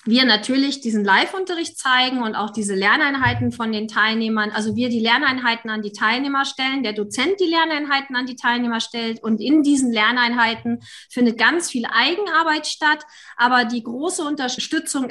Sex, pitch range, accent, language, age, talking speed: female, 225-305 Hz, German, German, 30-49, 165 wpm